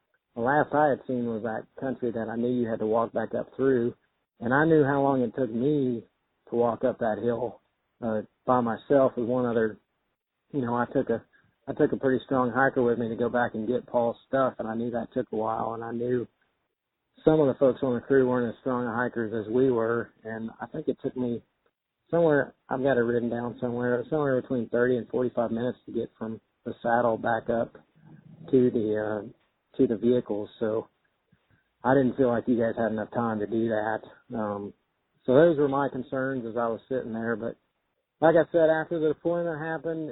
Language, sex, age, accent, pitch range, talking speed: English, male, 40-59, American, 115-140 Hz, 215 wpm